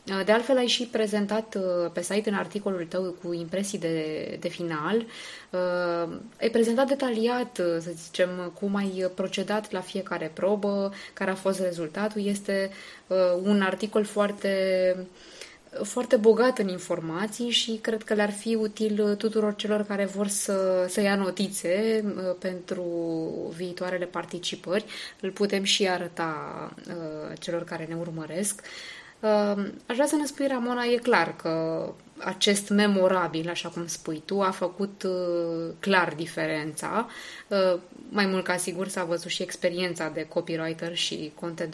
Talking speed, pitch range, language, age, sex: 135 wpm, 175-215 Hz, Romanian, 20-39, female